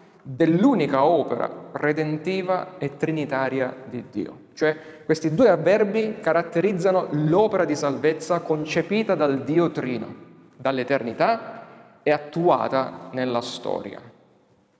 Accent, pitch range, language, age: native, 135-175 Hz, Italian, 40-59